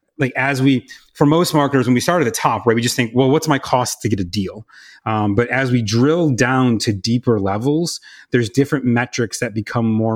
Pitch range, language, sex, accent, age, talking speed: 105-130 Hz, English, male, American, 30-49, 230 wpm